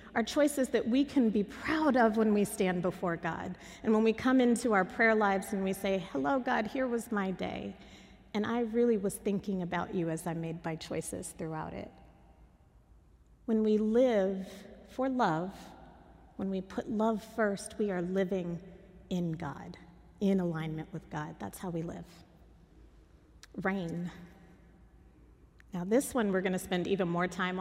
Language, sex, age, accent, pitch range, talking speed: English, female, 30-49, American, 165-215 Hz, 170 wpm